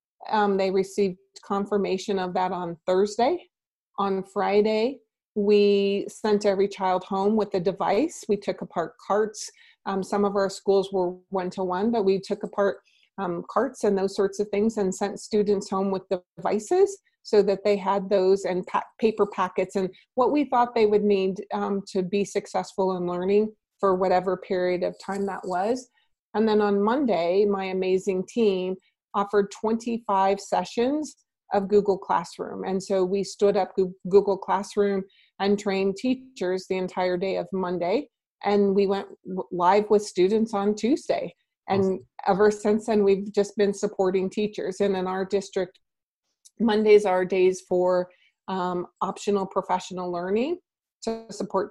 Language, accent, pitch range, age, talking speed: English, American, 185-210 Hz, 30-49, 155 wpm